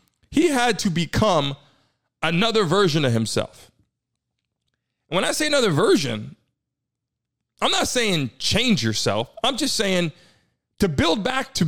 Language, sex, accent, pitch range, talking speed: English, male, American, 145-215 Hz, 130 wpm